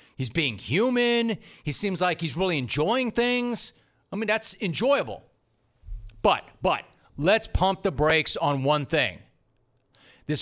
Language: English